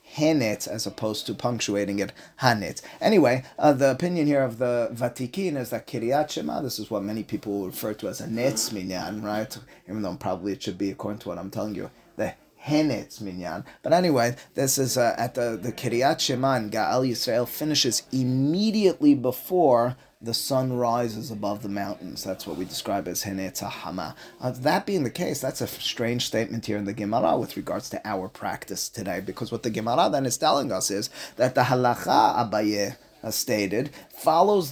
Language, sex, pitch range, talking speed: English, male, 110-145 Hz, 185 wpm